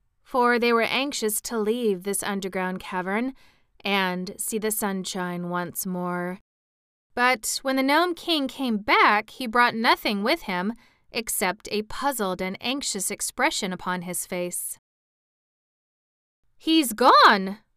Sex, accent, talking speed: female, American, 130 wpm